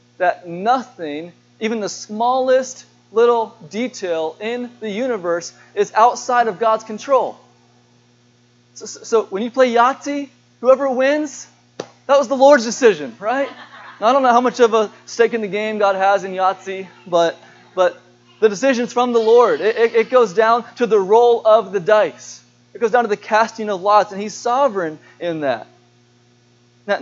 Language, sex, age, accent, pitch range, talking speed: English, male, 20-39, American, 175-235 Hz, 170 wpm